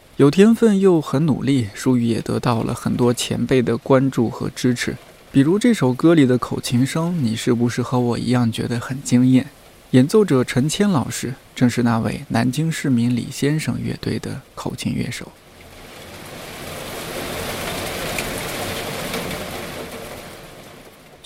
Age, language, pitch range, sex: 20-39, Chinese, 120-140 Hz, male